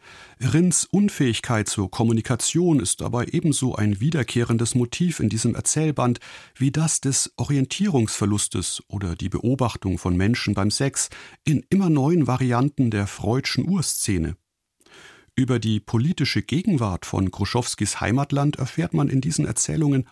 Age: 40-59